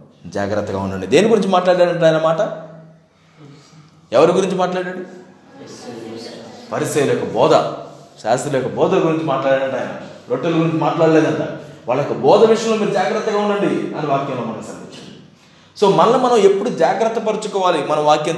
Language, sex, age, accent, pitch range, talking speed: Telugu, male, 20-39, native, 130-165 Hz, 120 wpm